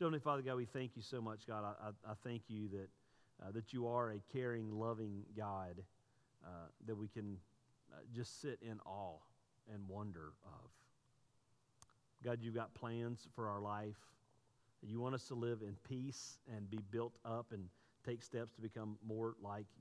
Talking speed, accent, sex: 175 wpm, American, male